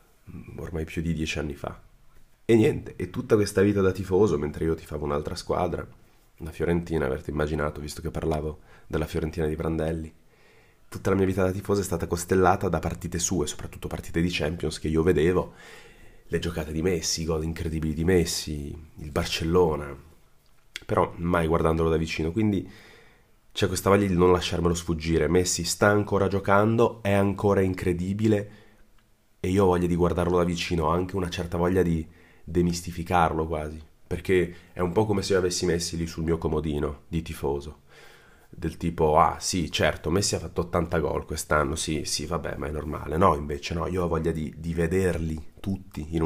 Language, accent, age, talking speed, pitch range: Italian, native, 30-49, 185 wpm, 80-95 Hz